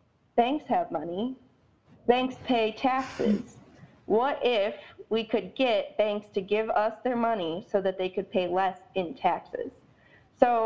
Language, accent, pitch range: English, American, 185-230 Hz